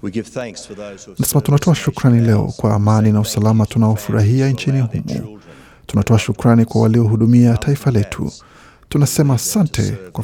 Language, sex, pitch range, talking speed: Swahili, male, 110-130 Hz, 115 wpm